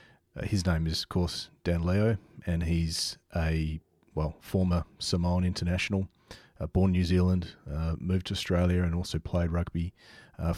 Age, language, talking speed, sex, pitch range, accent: 30-49, English, 155 wpm, male, 80-95 Hz, Australian